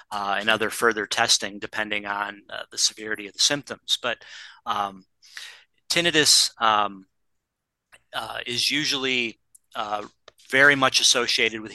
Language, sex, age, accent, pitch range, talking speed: English, male, 30-49, American, 110-130 Hz, 130 wpm